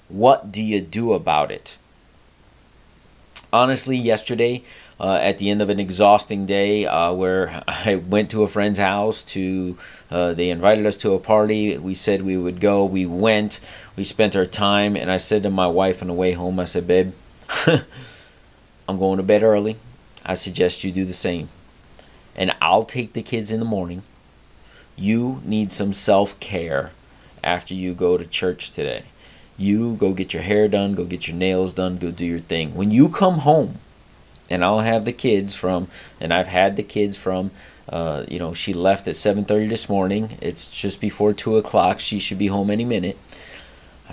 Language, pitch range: English, 90-105 Hz